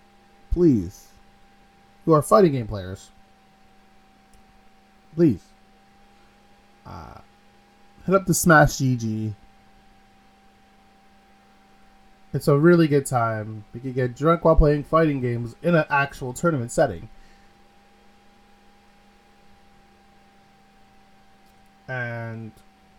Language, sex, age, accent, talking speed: English, male, 20-39, American, 85 wpm